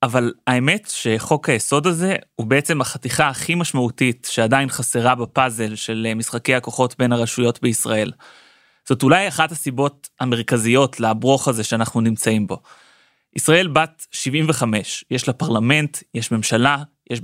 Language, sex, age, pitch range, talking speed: Hebrew, male, 20-39, 120-145 Hz, 130 wpm